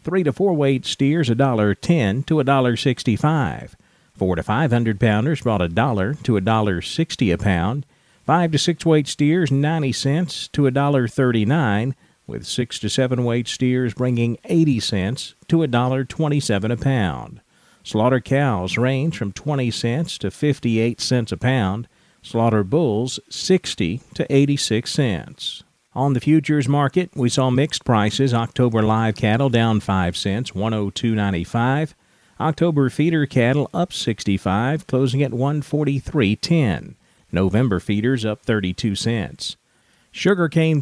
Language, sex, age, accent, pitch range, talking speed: English, male, 50-69, American, 115-150 Hz, 130 wpm